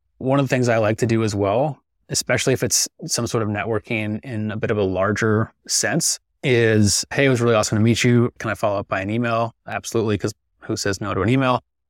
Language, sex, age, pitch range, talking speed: English, male, 20-39, 105-130 Hz, 240 wpm